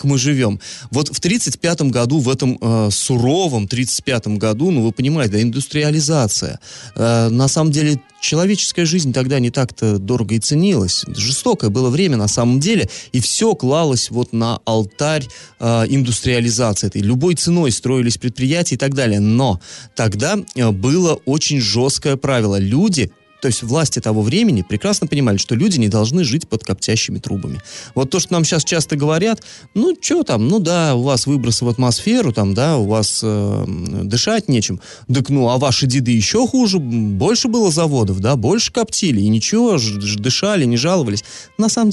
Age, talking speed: 20-39, 175 wpm